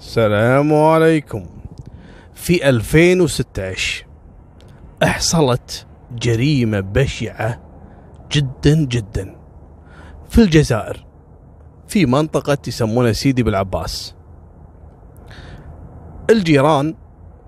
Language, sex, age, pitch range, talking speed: Arabic, male, 30-49, 95-150 Hz, 60 wpm